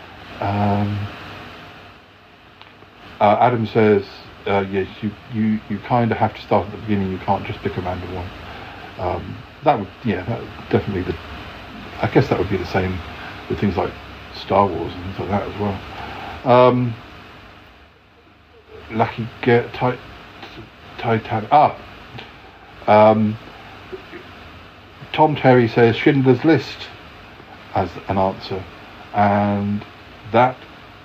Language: English